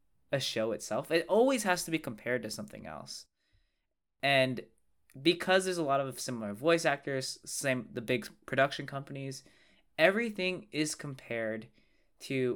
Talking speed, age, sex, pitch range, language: 145 wpm, 20-39, male, 115-155 Hz, English